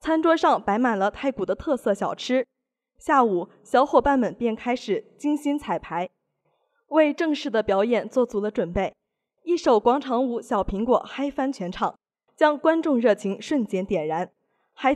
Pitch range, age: 210-285 Hz, 20-39